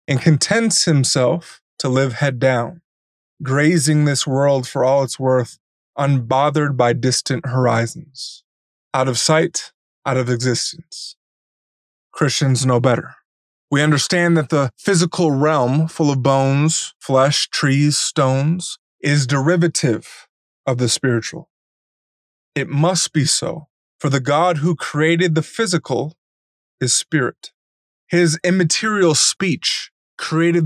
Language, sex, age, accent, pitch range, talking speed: English, male, 20-39, American, 130-165 Hz, 120 wpm